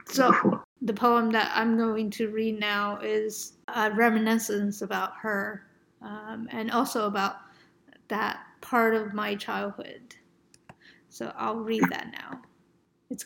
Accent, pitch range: American, 210-230 Hz